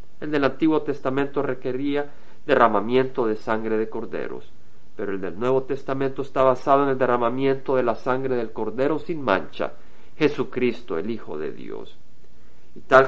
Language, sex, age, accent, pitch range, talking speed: Spanish, male, 50-69, Mexican, 115-140 Hz, 155 wpm